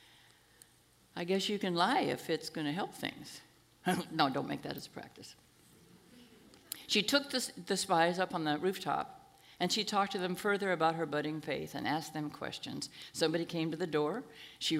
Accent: American